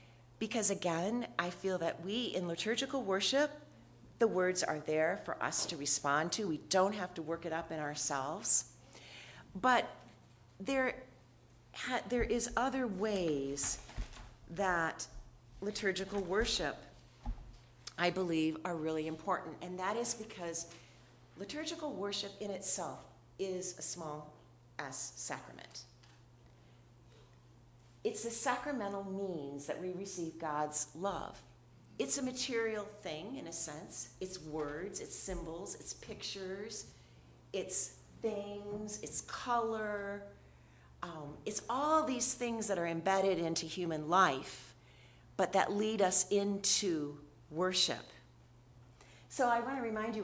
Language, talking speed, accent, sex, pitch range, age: English, 125 wpm, American, female, 135-205 Hz, 40-59